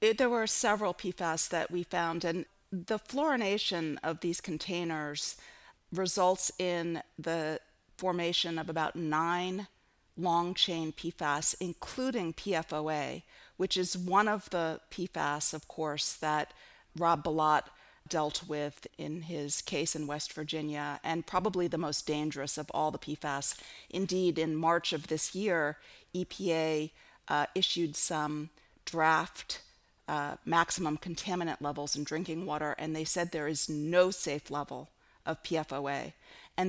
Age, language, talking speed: 40-59, English, 135 wpm